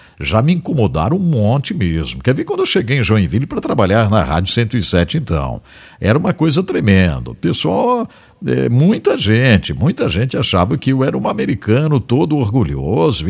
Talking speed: 160 wpm